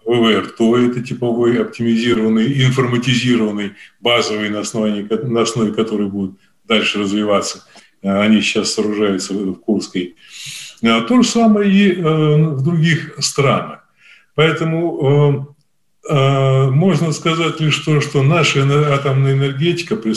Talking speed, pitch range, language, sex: 105 wpm, 110-150 Hz, Russian, male